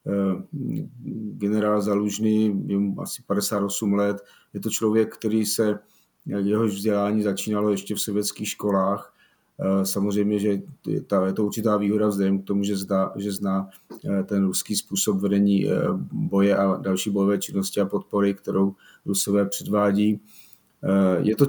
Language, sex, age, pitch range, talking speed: Slovak, male, 30-49, 100-110 Hz, 135 wpm